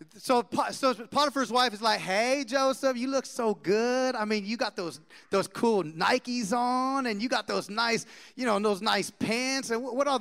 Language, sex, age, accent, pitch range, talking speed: English, male, 30-49, American, 200-250 Hz, 200 wpm